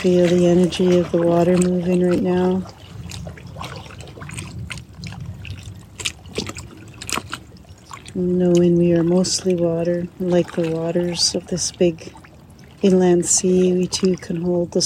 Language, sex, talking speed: English, female, 110 wpm